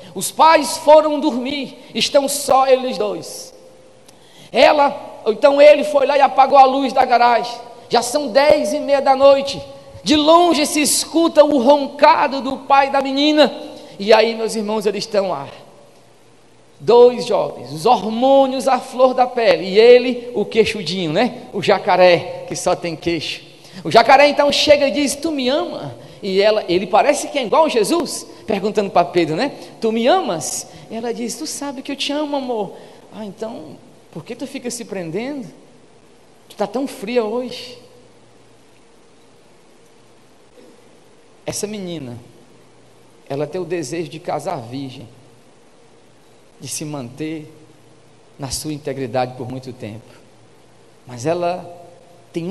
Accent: Brazilian